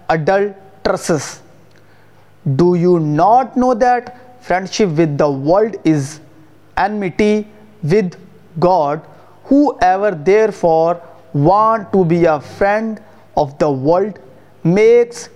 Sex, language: male, Urdu